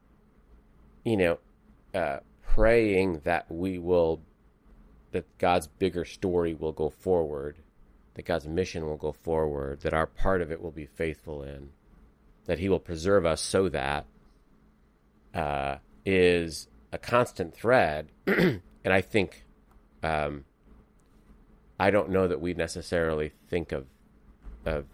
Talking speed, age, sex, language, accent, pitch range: 130 wpm, 30-49, male, English, American, 70-85 Hz